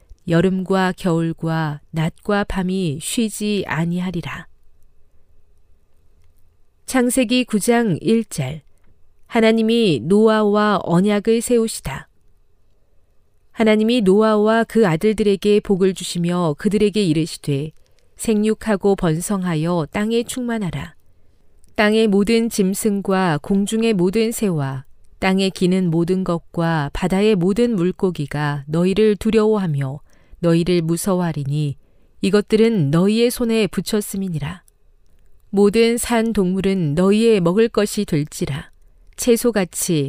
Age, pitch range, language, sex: 40-59, 150-210 Hz, Korean, female